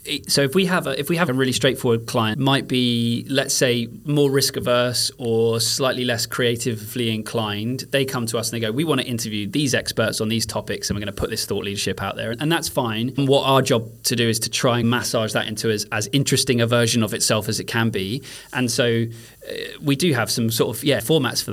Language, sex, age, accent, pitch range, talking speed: English, male, 20-39, British, 115-135 Hz, 245 wpm